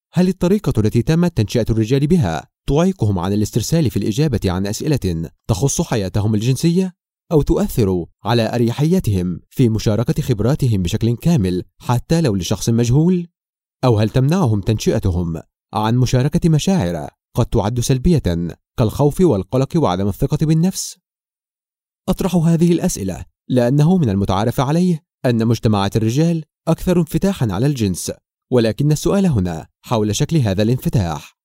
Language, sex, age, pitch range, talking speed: Arabic, male, 30-49, 110-165 Hz, 125 wpm